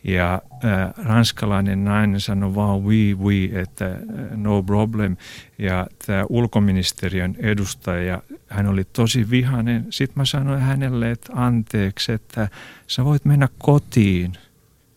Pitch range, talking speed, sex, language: 95-120 Hz, 120 wpm, male, Finnish